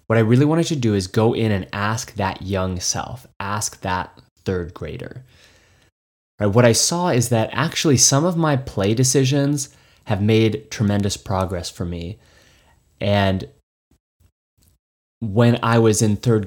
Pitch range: 100-125 Hz